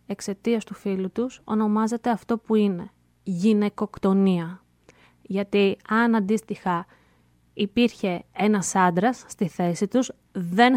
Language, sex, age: Greek, female, 20-39